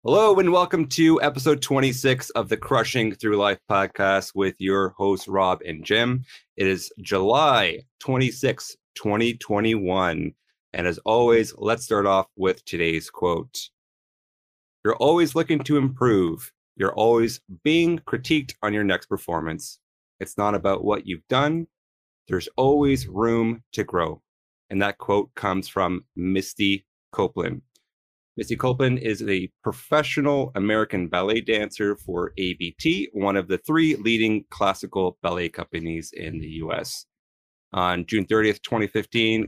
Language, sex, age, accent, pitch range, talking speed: English, male, 30-49, American, 95-130 Hz, 135 wpm